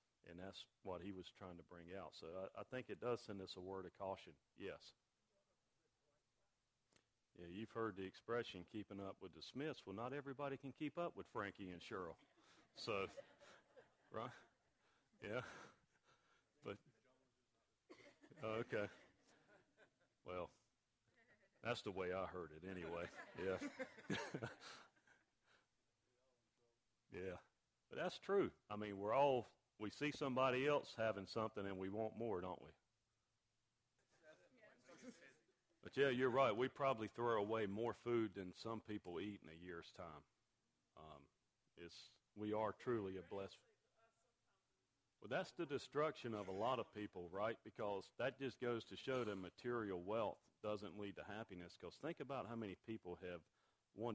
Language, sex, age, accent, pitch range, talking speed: English, male, 40-59, American, 95-125 Hz, 145 wpm